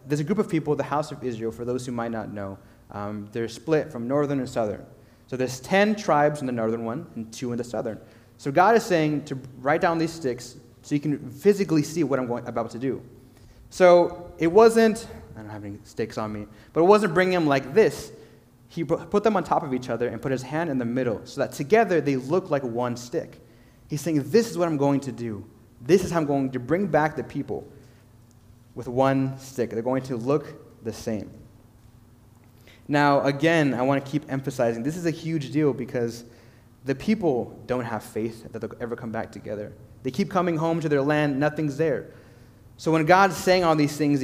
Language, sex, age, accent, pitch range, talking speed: English, male, 30-49, American, 115-155 Hz, 220 wpm